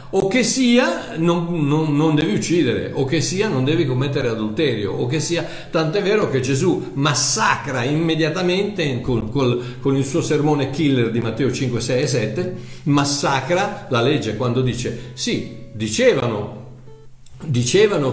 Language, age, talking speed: Italian, 50-69, 145 wpm